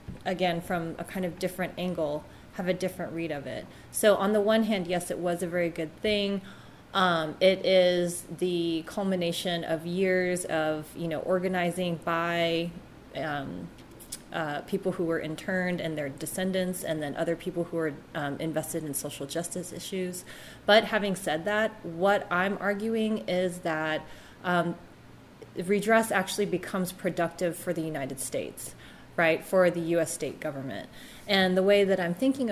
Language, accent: English, American